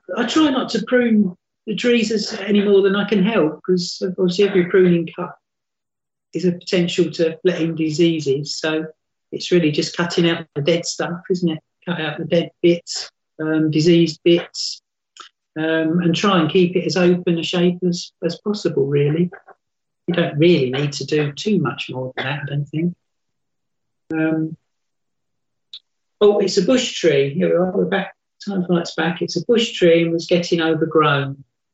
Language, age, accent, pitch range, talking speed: English, 50-69, British, 155-185 Hz, 175 wpm